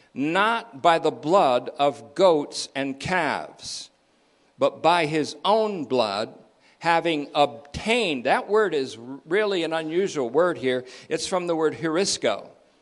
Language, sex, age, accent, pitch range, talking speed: English, male, 60-79, American, 135-175 Hz, 130 wpm